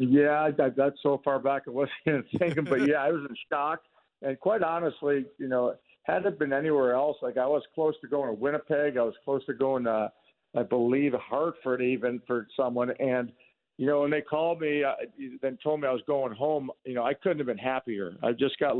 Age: 50-69